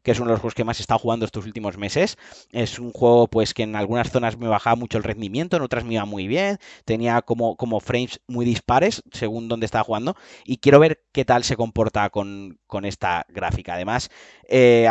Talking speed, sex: 225 wpm, male